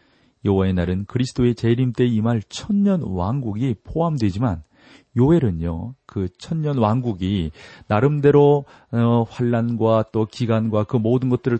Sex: male